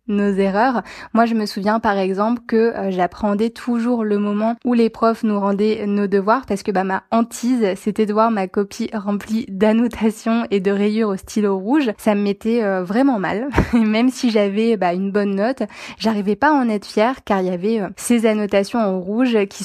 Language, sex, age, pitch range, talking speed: French, female, 20-39, 200-230 Hz, 210 wpm